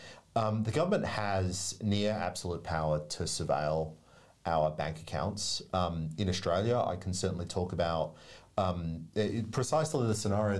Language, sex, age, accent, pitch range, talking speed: English, male, 40-59, Australian, 90-110 Hz, 140 wpm